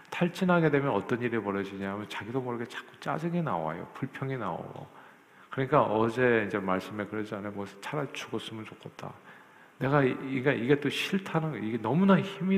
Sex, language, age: male, Korean, 50-69